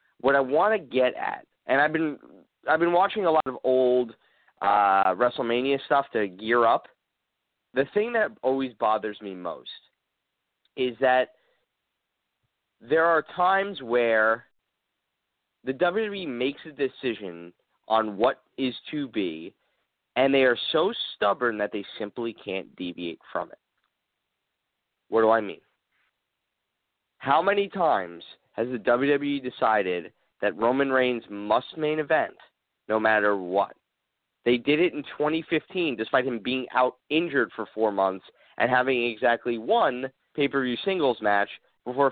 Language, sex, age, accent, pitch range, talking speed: English, male, 30-49, American, 110-155 Hz, 140 wpm